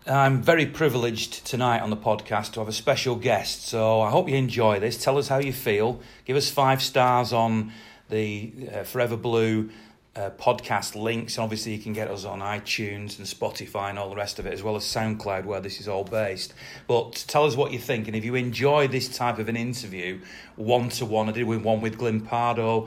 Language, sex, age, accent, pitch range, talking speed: English, male, 40-59, British, 105-125 Hz, 210 wpm